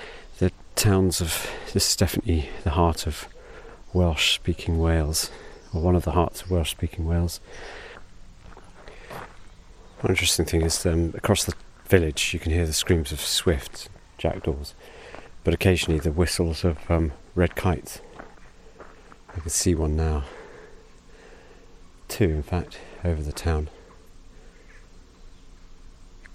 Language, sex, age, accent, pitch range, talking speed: English, male, 40-59, British, 80-90 Hz, 125 wpm